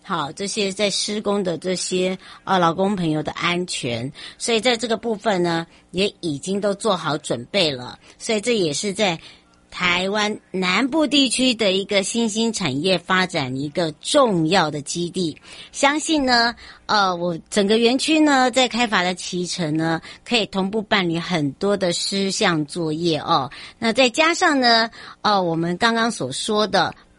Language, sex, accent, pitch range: Chinese, male, American, 175-245 Hz